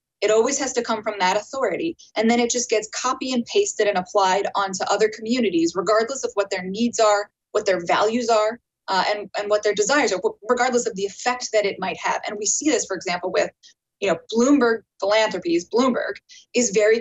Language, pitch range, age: English, 205-255 Hz, 20-39